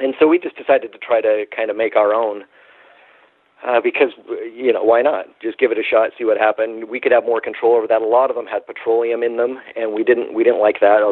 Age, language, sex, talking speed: 40-59, English, male, 265 wpm